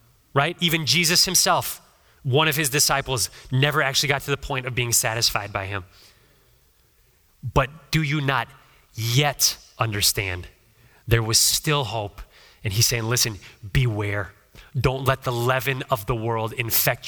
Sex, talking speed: male, 150 wpm